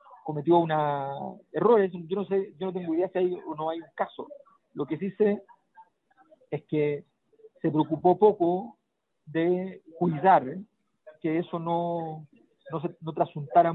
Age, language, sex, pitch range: 40-59, Spanish, male, 155-205 Hz